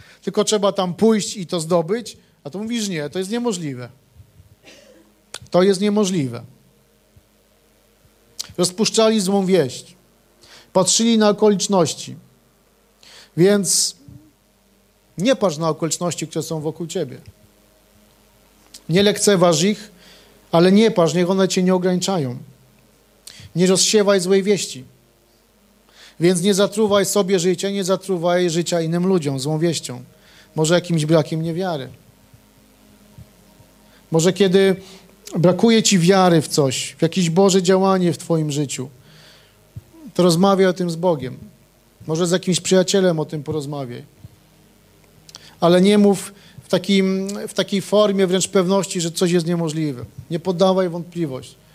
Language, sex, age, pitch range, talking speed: Polish, male, 40-59, 155-195 Hz, 125 wpm